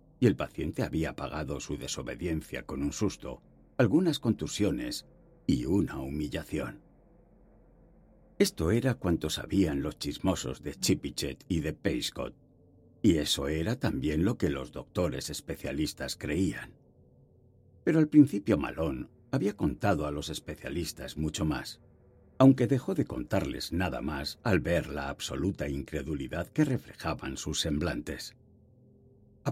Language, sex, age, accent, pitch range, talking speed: Spanish, male, 60-79, Spanish, 75-115 Hz, 130 wpm